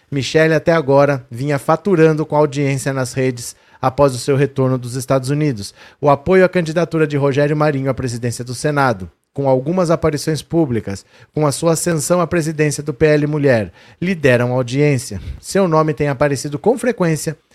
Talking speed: 170 wpm